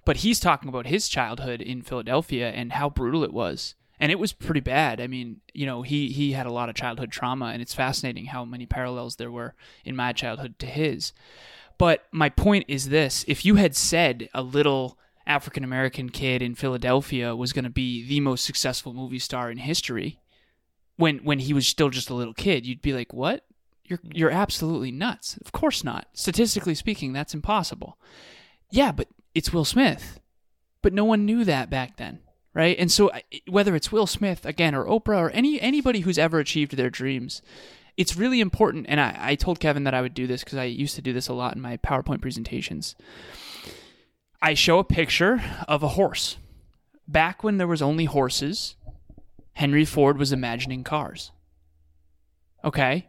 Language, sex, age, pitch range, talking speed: English, male, 20-39, 125-165 Hz, 190 wpm